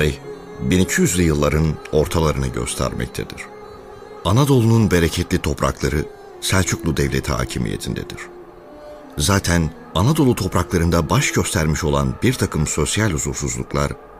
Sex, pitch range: male, 75-100 Hz